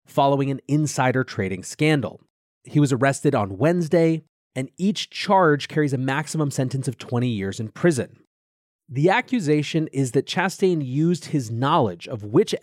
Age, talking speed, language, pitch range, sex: 30-49, 150 wpm, English, 125-165 Hz, male